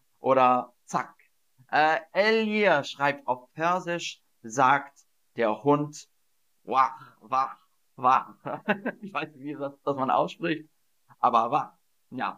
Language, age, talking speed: German, 40-59, 110 wpm